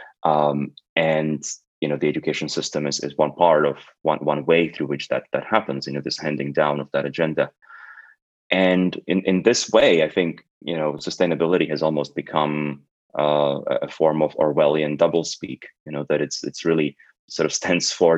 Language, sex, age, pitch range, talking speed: English, male, 20-39, 70-80 Hz, 190 wpm